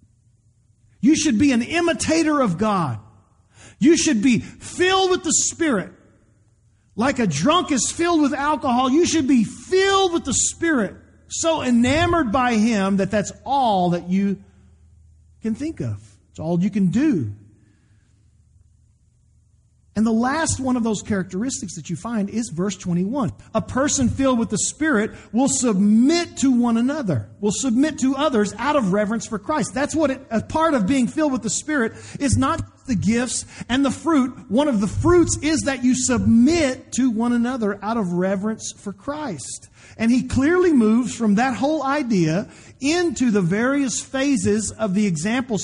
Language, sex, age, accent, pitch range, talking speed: English, male, 40-59, American, 175-265 Hz, 165 wpm